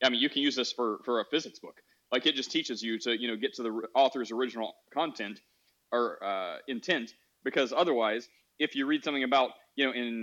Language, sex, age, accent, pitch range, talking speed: English, male, 30-49, American, 125-165 Hz, 225 wpm